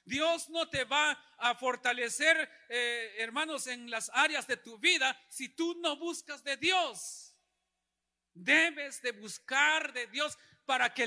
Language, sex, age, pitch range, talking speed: Spanish, male, 50-69, 220-300 Hz, 145 wpm